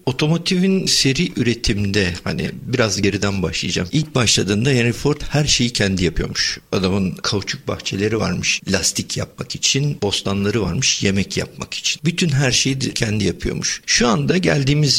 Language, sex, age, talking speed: Turkish, male, 50-69, 140 wpm